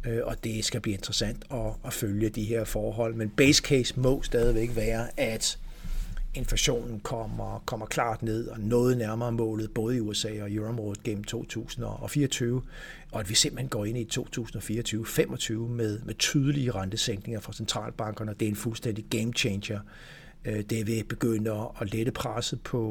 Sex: male